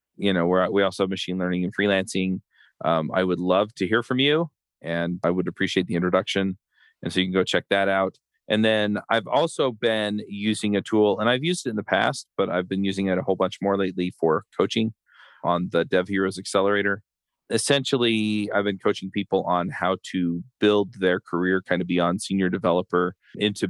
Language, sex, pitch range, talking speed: English, male, 90-105 Hz, 205 wpm